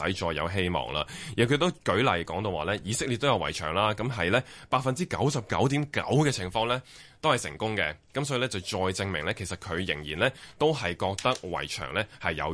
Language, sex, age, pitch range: Chinese, male, 20-39, 85-125 Hz